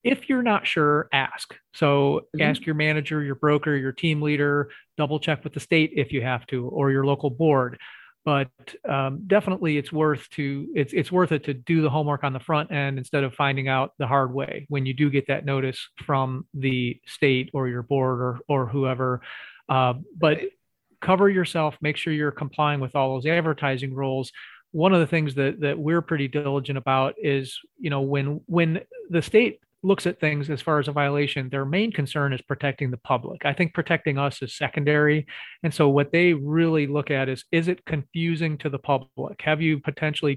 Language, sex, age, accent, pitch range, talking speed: English, male, 30-49, American, 135-155 Hz, 200 wpm